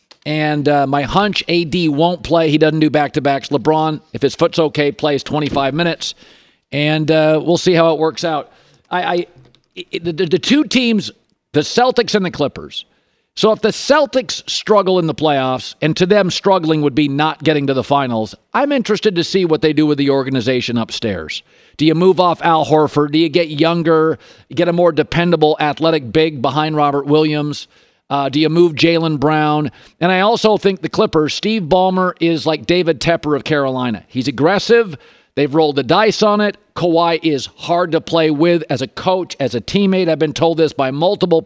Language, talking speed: English, 190 wpm